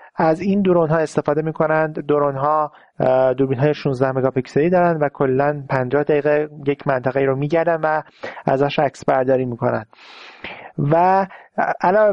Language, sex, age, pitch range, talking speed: Persian, male, 30-49, 145-170 Hz, 160 wpm